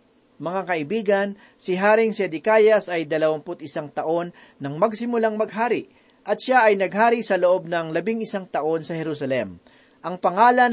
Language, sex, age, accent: Filipino, male, 40-59, native